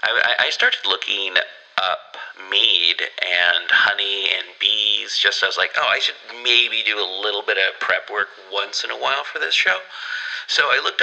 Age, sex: 30-49, male